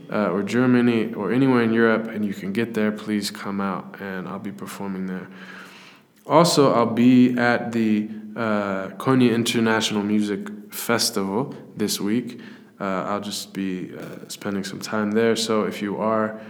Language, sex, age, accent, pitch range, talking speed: English, male, 20-39, American, 95-110 Hz, 165 wpm